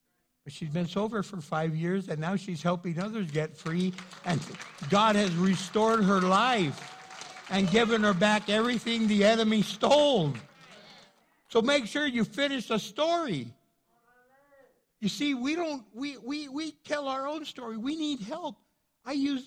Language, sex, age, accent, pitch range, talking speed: English, male, 60-79, American, 170-220 Hz, 155 wpm